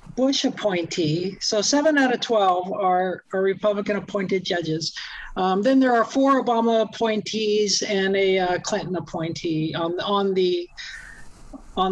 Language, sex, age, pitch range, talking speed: English, male, 50-69, 195-245 Hz, 130 wpm